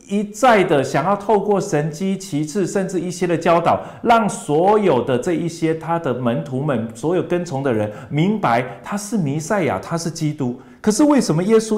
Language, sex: Chinese, male